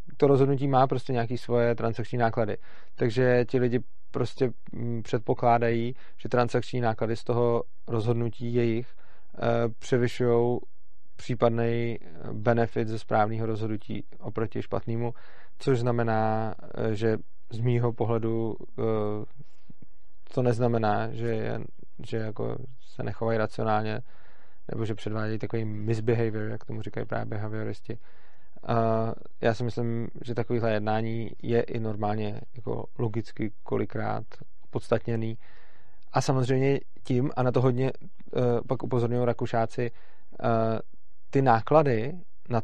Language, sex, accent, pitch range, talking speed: Czech, male, native, 115-125 Hz, 110 wpm